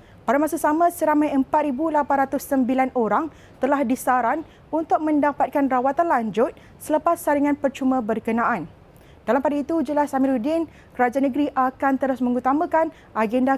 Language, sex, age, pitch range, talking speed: Malay, female, 30-49, 255-315 Hz, 120 wpm